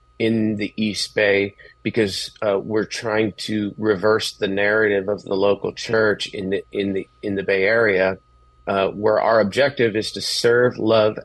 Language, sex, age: English, male, 30-49